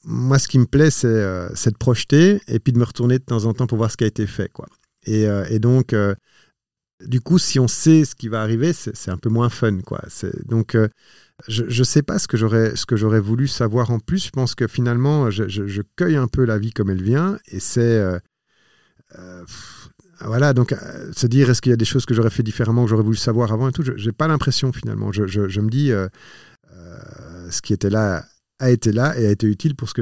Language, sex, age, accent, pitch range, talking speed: French, male, 50-69, French, 110-135 Hz, 265 wpm